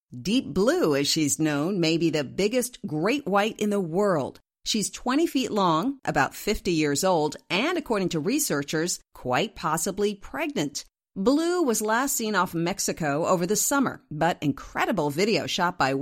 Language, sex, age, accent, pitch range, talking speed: English, female, 50-69, American, 160-225 Hz, 160 wpm